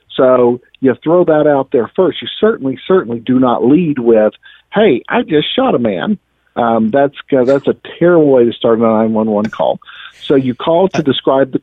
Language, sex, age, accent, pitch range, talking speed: English, male, 50-69, American, 115-145 Hz, 195 wpm